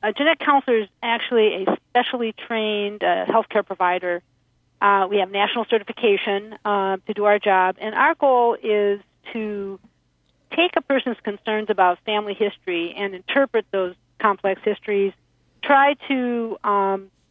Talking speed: 145 wpm